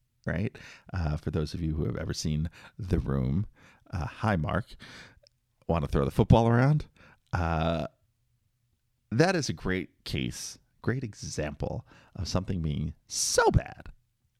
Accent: American